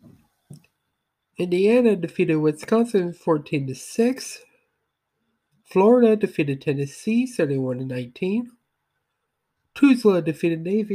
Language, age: English, 50-69